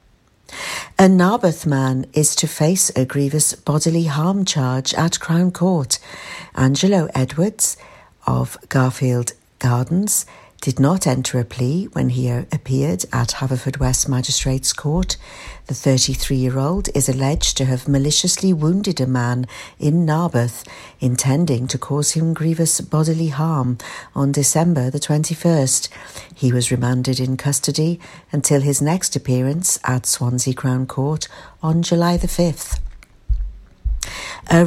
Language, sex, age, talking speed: English, female, 60-79, 130 wpm